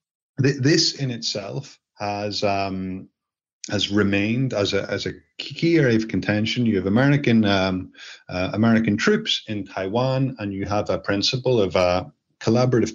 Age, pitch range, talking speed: 30-49, 100-125 Hz, 155 wpm